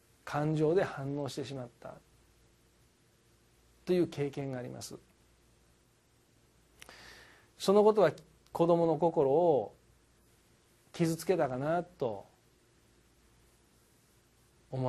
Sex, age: male, 40-59